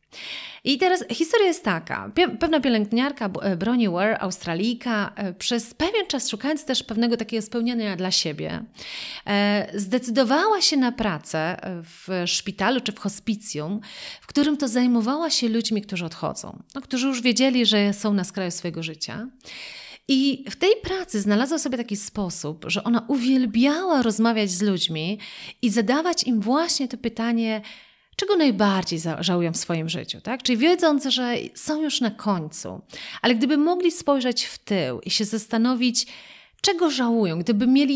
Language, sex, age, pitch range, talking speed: Polish, female, 30-49, 195-265 Hz, 150 wpm